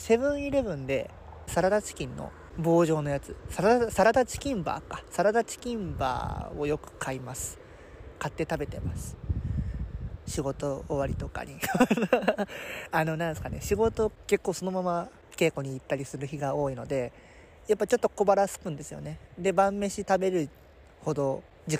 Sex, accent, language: male, native, Japanese